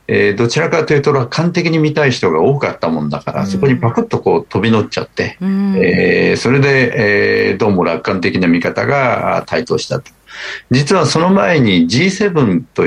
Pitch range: 115-190 Hz